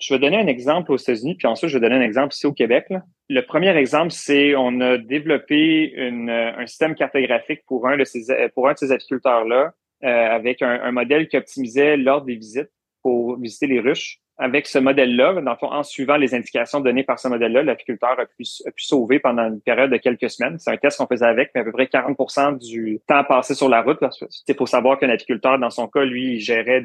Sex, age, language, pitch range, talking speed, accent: male, 30-49, French, 120-145 Hz, 230 wpm, Canadian